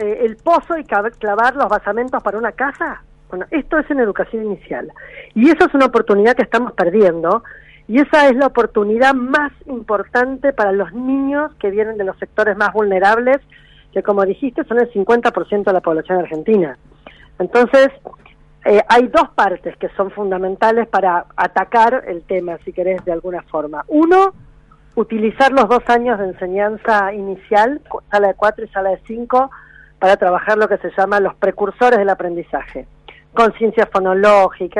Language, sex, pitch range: Spanish, female, 190-250 Hz